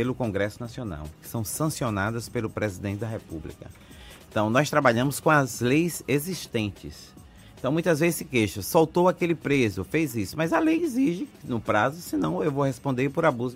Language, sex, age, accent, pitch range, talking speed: Portuguese, male, 30-49, Brazilian, 105-145 Hz, 175 wpm